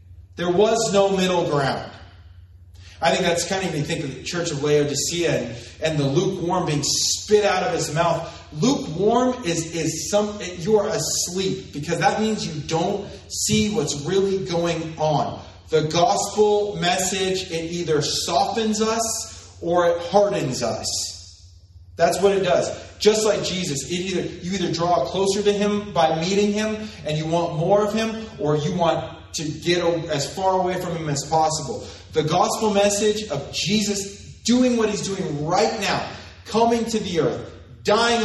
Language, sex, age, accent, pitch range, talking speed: English, male, 30-49, American, 155-205 Hz, 170 wpm